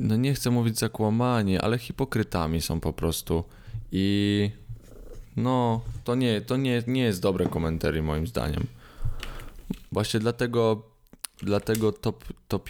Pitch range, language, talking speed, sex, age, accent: 90-110 Hz, Polish, 125 wpm, male, 20-39, native